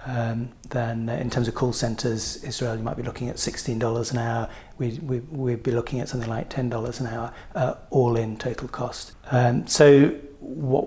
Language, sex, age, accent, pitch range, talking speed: English, male, 40-59, British, 115-130 Hz, 195 wpm